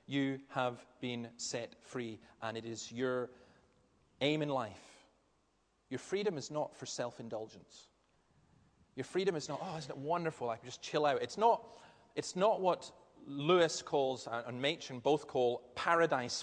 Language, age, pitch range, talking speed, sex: English, 30-49, 130-170 Hz, 155 wpm, male